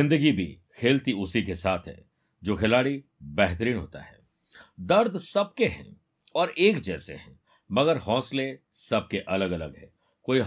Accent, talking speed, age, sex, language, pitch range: native, 150 wpm, 50-69, male, Hindi, 100-140 Hz